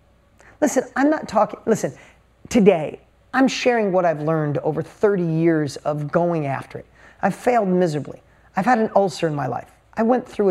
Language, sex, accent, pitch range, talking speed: English, male, American, 165-220 Hz, 175 wpm